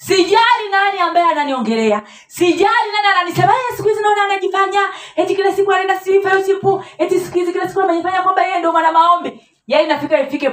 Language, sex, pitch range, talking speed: Swahili, female, 210-350 Hz, 175 wpm